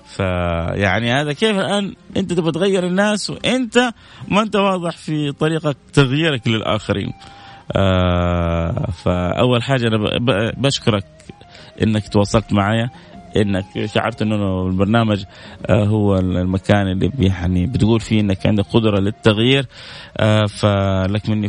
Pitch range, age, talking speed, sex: 100-125 Hz, 20-39, 115 wpm, male